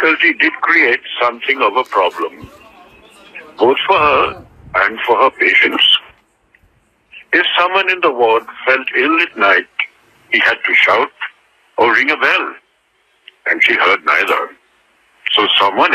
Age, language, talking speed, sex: 60-79, Marathi, 145 wpm, male